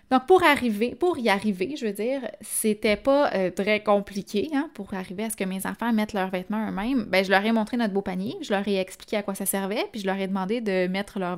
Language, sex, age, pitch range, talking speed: French, female, 20-39, 200-250 Hz, 265 wpm